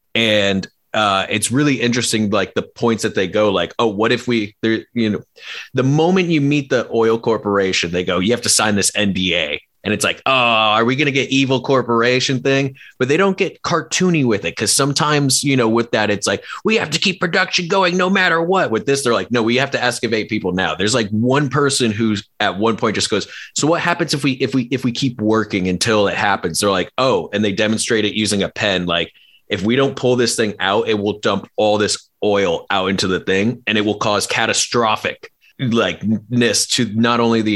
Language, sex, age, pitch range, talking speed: English, male, 30-49, 105-130 Hz, 225 wpm